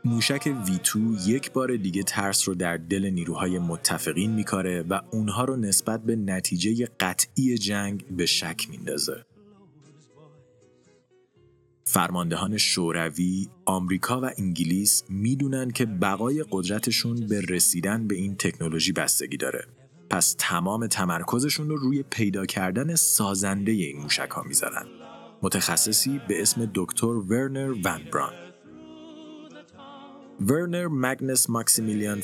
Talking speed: 115 wpm